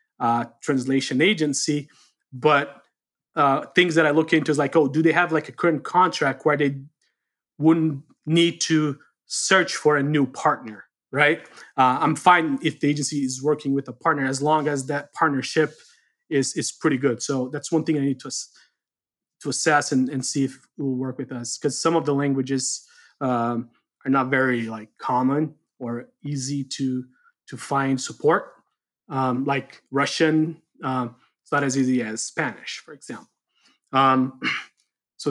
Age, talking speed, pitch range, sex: 20-39, 170 wpm, 135-155 Hz, male